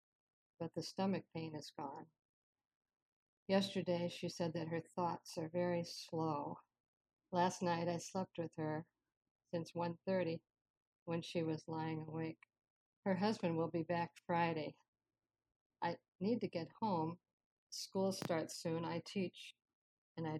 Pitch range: 165-190 Hz